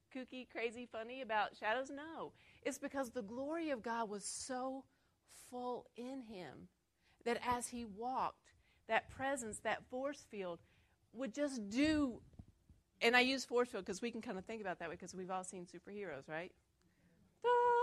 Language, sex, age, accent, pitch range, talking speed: English, female, 40-59, American, 230-290 Hz, 170 wpm